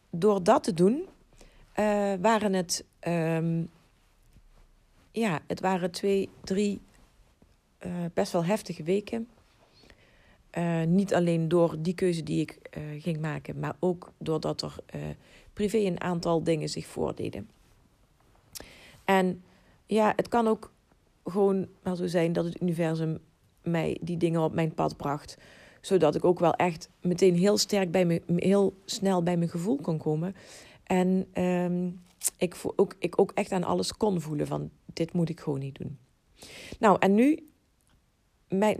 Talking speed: 155 wpm